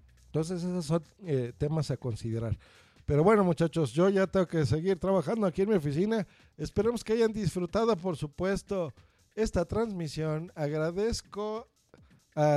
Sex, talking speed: male, 145 wpm